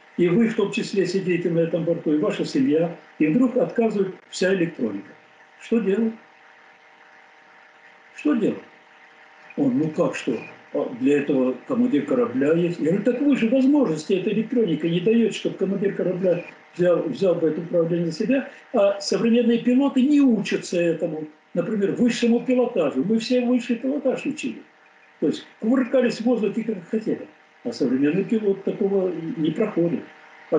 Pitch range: 155-235 Hz